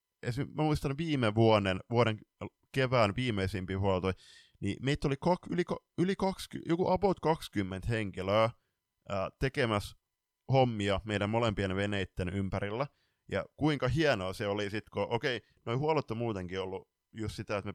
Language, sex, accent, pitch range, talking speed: Finnish, male, native, 95-125 Hz, 150 wpm